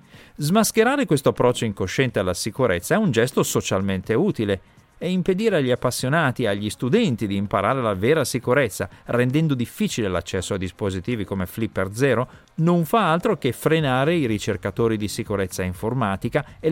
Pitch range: 105-160 Hz